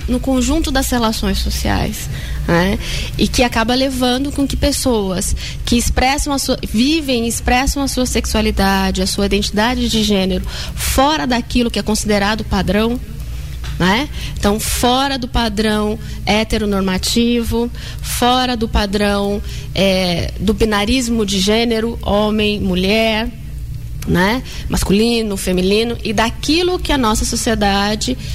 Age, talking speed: 20-39, 125 wpm